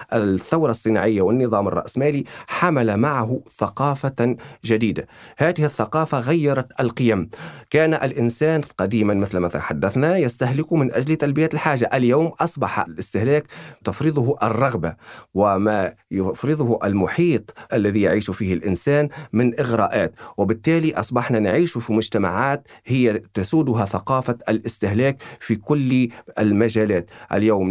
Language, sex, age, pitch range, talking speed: Arabic, male, 40-59, 110-150 Hz, 105 wpm